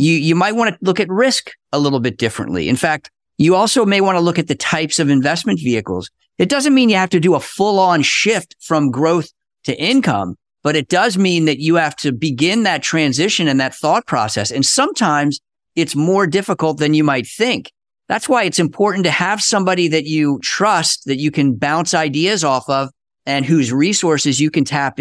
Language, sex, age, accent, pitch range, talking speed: English, male, 50-69, American, 140-185 Hz, 210 wpm